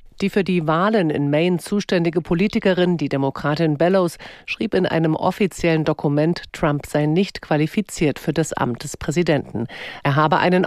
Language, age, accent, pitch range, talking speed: German, 50-69, German, 160-185 Hz, 155 wpm